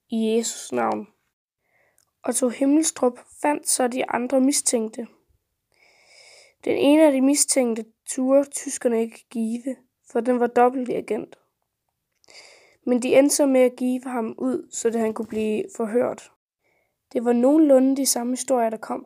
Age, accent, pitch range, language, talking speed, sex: 20-39, native, 230-265 Hz, Danish, 150 wpm, female